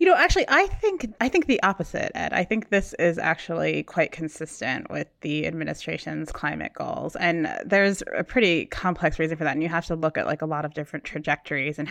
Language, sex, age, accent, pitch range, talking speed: English, female, 20-39, American, 155-175 Hz, 215 wpm